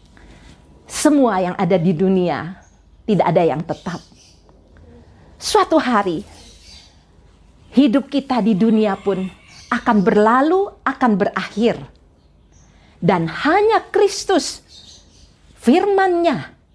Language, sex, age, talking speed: Indonesian, female, 50-69, 85 wpm